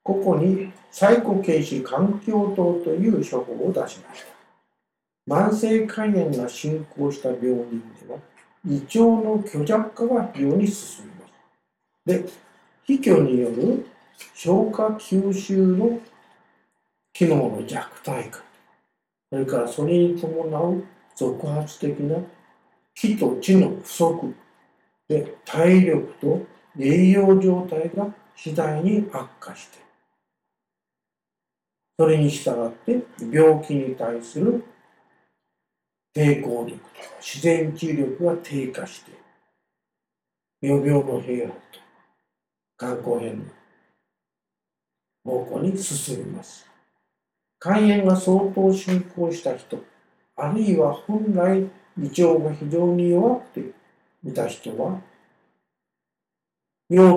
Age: 60-79